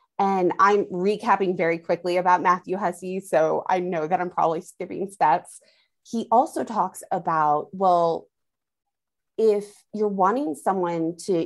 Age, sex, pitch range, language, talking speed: 20-39, female, 165-215 Hz, English, 135 wpm